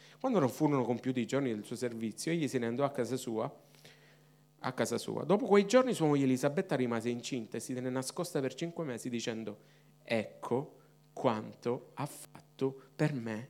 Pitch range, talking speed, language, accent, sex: 130-160 Hz, 180 wpm, Italian, native, male